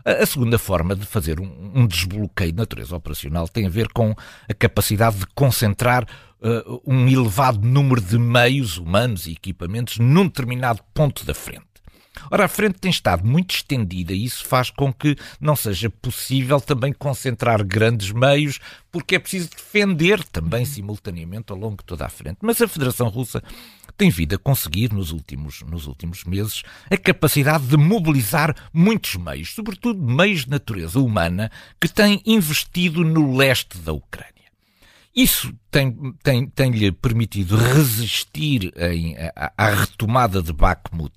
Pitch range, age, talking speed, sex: 100-150 Hz, 50-69, 150 wpm, male